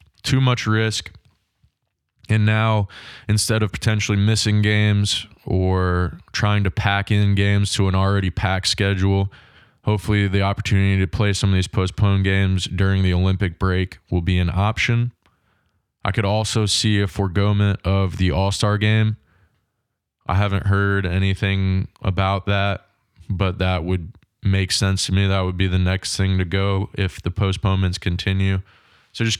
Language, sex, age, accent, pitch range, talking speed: English, male, 20-39, American, 95-105 Hz, 155 wpm